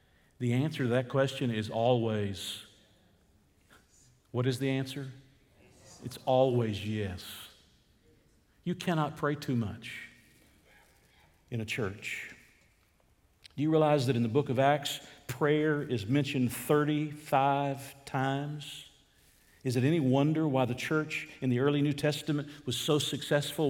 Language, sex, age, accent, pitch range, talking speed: English, male, 50-69, American, 120-150 Hz, 130 wpm